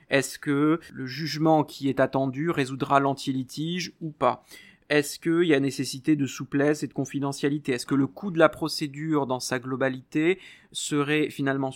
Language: French